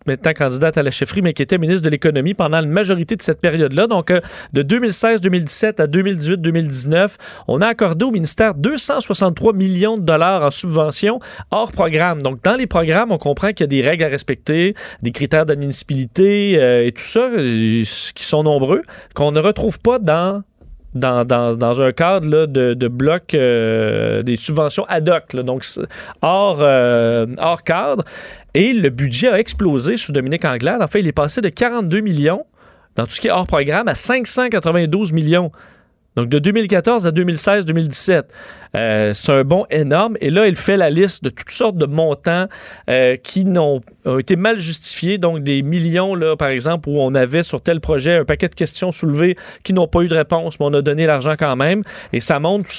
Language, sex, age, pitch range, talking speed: French, male, 30-49, 145-195 Hz, 200 wpm